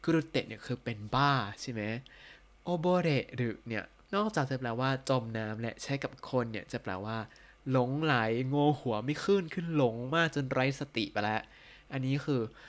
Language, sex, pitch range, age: Thai, male, 120-150 Hz, 20-39